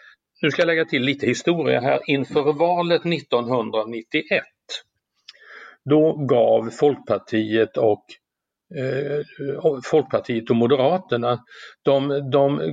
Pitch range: 115-155 Hz